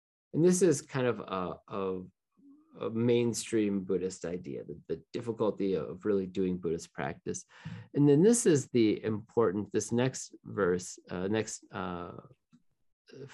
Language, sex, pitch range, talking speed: English, male, 95-135 Hz, 140 wpm